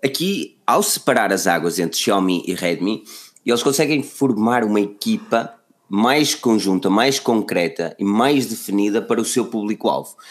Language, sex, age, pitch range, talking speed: Portuguese, male, 20-39, 95-120 Hz, 145 wpm